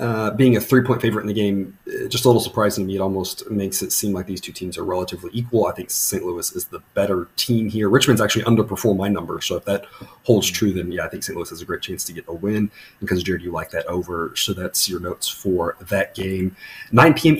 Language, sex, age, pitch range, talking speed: English, male, 30-49, 105-135 Hz, 255 wpm